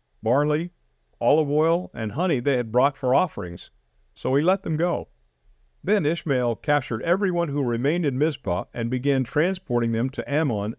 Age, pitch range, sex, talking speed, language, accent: 50-69, 110-150 Hz, male, 160 wpm, English, American